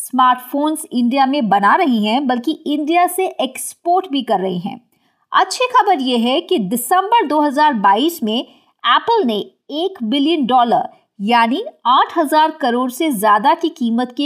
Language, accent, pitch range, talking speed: Hindi, native, 245-345 Hz, 145 wpm